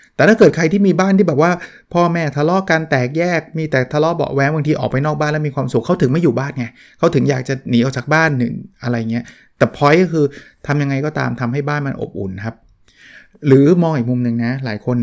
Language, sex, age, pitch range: Thai, male, 20-39, 120-150 Hz